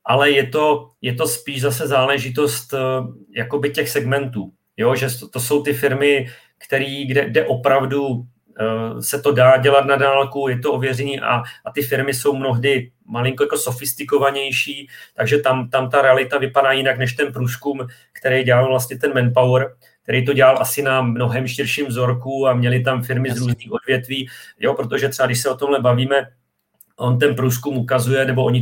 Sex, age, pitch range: male, 40-59, 125-140 Hz